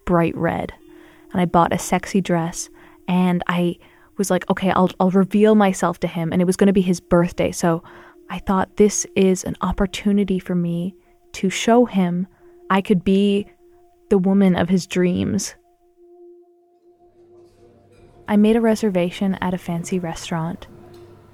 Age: 20-39